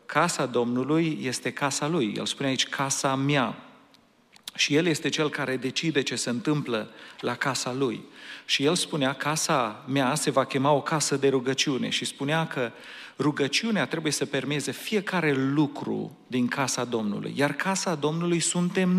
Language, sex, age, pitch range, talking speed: Romanian, male, 40-59, 130-165 Hz, 160 wpm